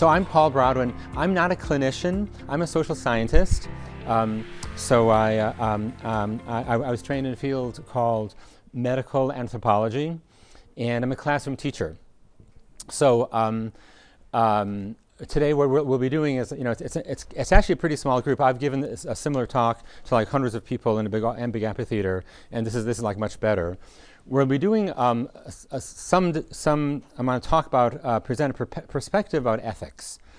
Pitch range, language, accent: 110-135 Hz, English, American